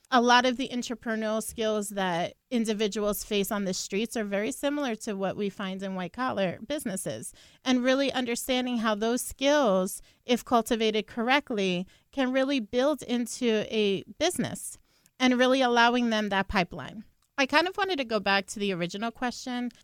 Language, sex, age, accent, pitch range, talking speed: English, female, 30-49, American, 205-250 Hz, 165 wpm